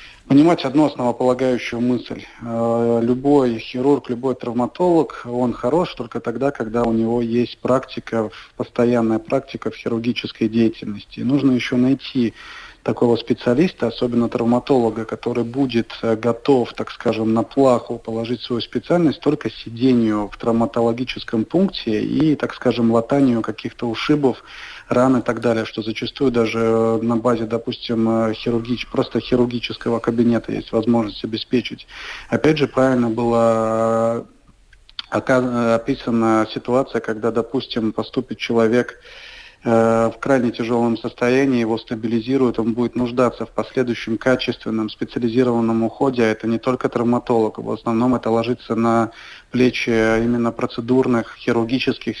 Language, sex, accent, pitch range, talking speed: Russian, male, native, 115-125 Hz, 120 wpm